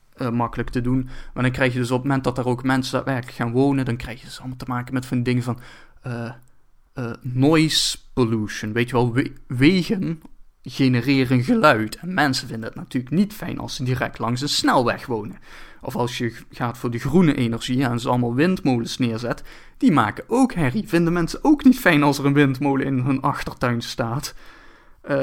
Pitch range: 125-150 Hz